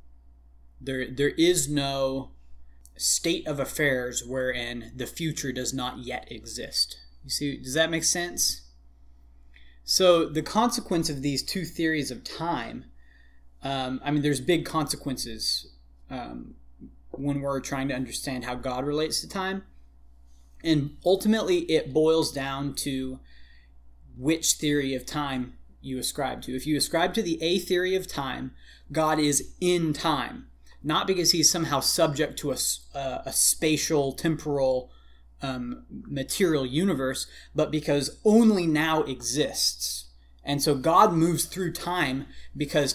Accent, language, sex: American, English, male